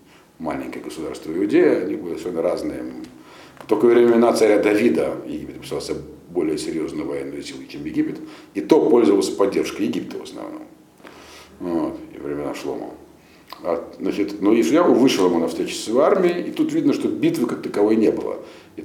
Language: Russian